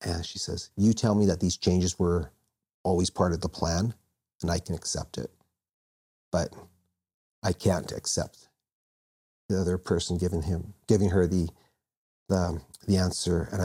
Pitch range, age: 85-95 Hz, 40-59